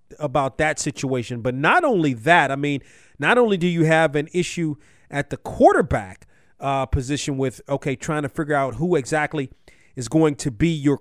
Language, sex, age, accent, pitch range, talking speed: English, male, 40-59, American, 135-155 Hz, 185 wpm